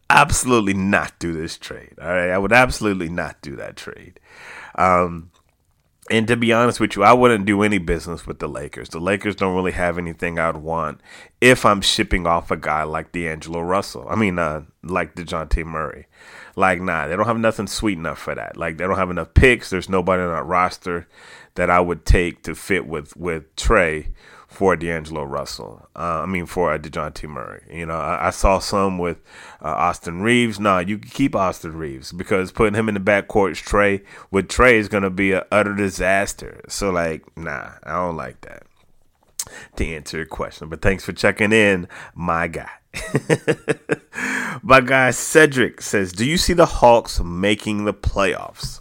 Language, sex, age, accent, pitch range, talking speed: English, male, 30-49, American, 85-105 Hz, 190 wpm